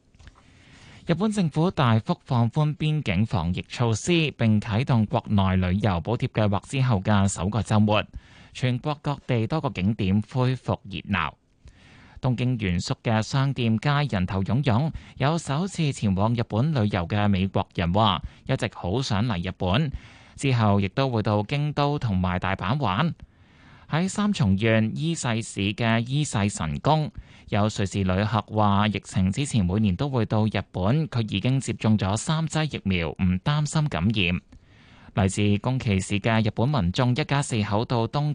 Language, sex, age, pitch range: Chinese, male, 20-39, 100-135 Hz